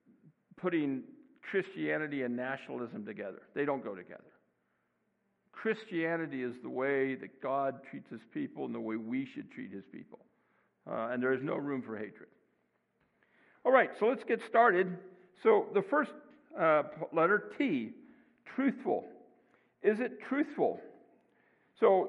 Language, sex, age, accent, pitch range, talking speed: English, male, 60-79, American, 160-220 Hz, 140 wpm